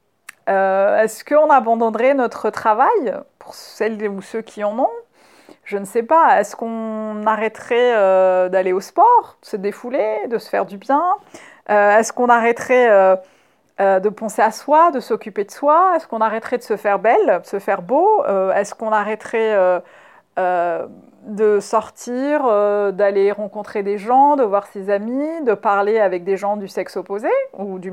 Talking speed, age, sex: 180 wpm, 40-59, female